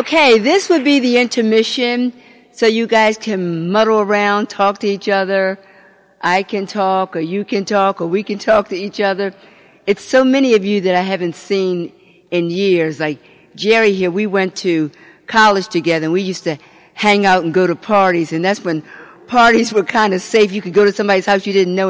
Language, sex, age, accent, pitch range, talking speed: English, female, 50-69, American, 190-235 Hz, 210 wpm